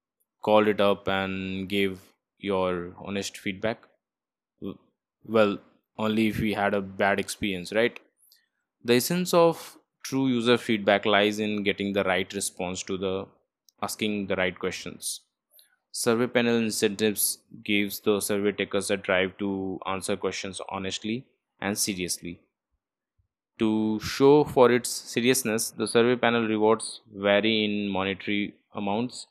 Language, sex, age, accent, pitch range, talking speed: English, male, 20-39, Indian, 100-110 Hz, 130 wpm